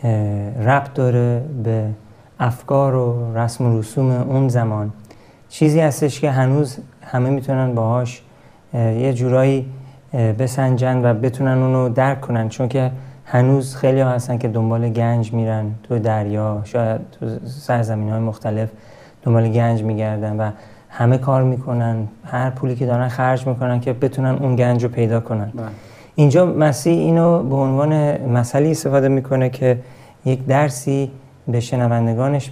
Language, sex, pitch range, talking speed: Persian, male, 115-135 Hz, 140 wpm